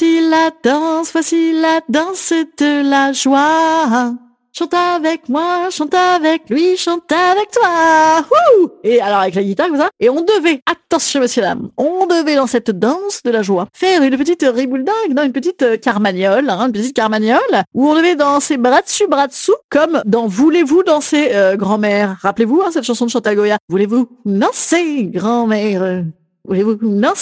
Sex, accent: female, French